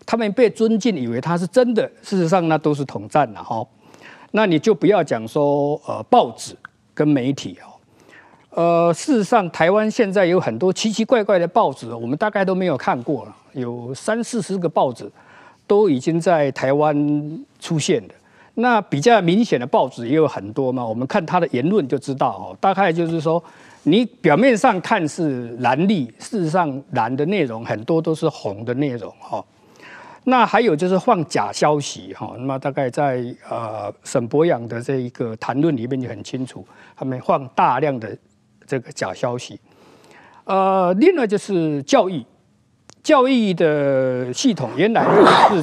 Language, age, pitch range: Chinese, 50-69, 130-200 Hz